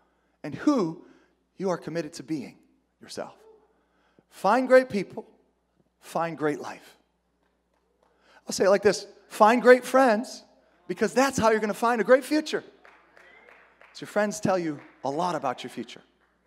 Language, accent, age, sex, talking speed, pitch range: English, American, 30-49, male, 155 wpm, 170-215 Hz